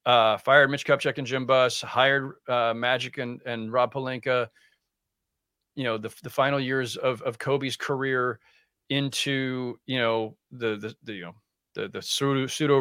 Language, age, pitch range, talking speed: English, 40-59, 115-145 Hz, 170 wpm